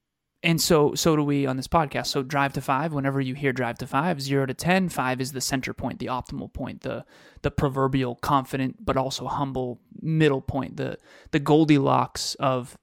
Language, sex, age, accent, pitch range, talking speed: English, male, 20-39, American, 130-160 Hz, 195 wpm